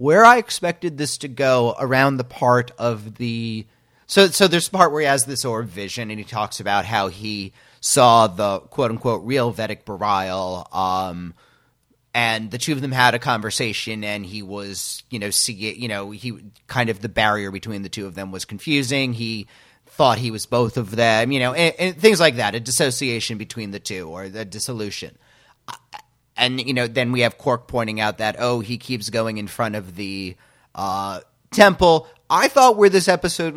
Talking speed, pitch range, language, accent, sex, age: 200 wpm, 110-140 Hz, English, American, male, 30-49